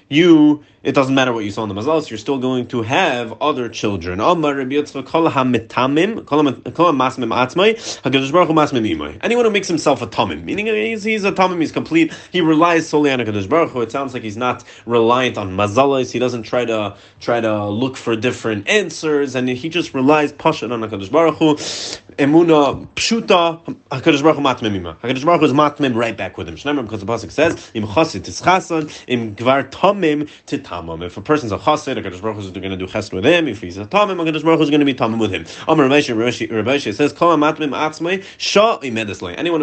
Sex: male